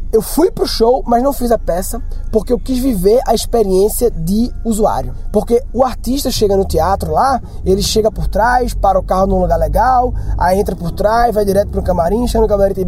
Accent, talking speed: Brazilian, 215 wpm